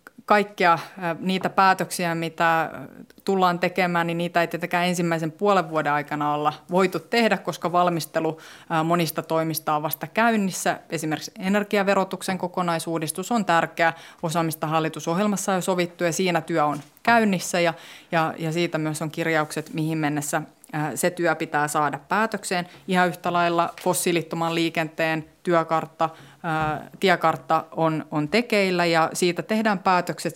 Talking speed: 130 wpm